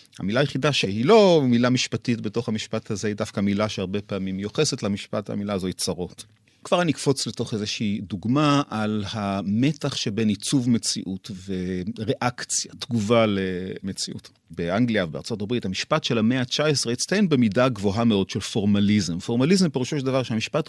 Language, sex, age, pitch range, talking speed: Hebrew, male, 40-59, 105-140 Hz, 150 wpm